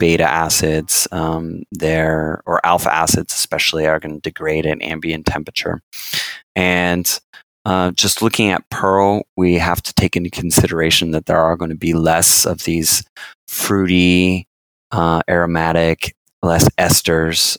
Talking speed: 140 wpm